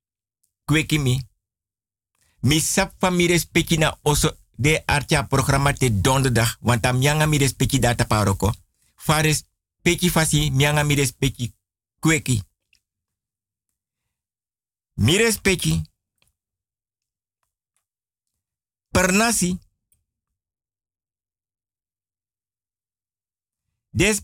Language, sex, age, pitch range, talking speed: Dutch, male, 50-69, 100-155 Hz, 65 wpm